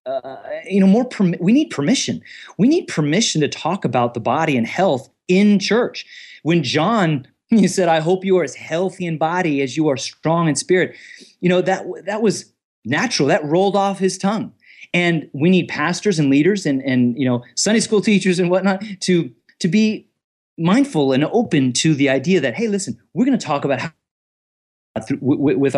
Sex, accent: male, American